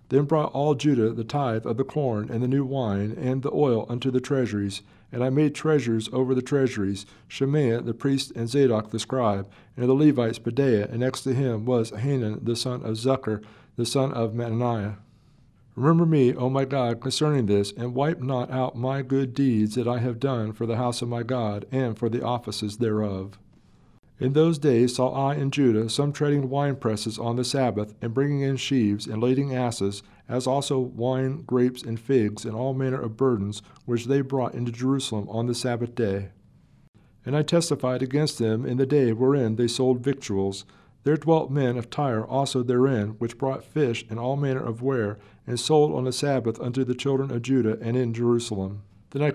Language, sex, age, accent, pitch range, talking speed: English, male, 50-69, American, 115-135 Hz, 200 wpm